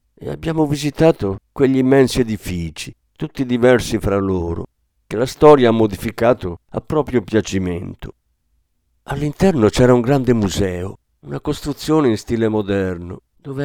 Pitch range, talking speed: 95-140 Hz, 130 wpm